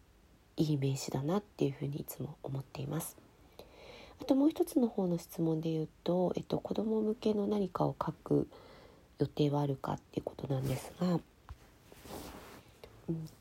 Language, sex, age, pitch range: Japanese, female, 40-59, 150-200 Hz